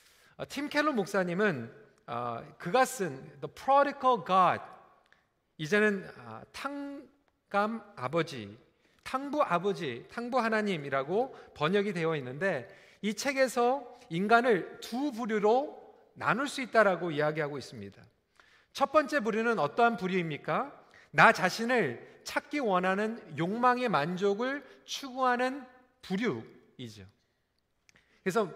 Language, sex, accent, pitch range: Korean, male, native, 185-255 Hz